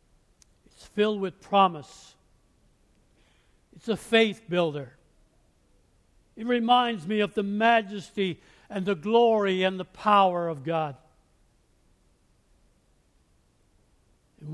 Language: English